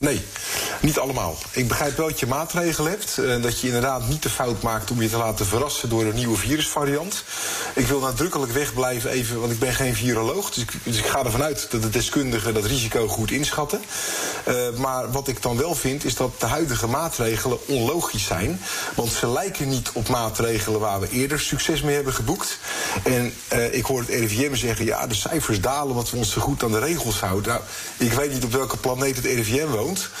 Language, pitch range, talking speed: Dutch, 115-150 Hz, 215 wpm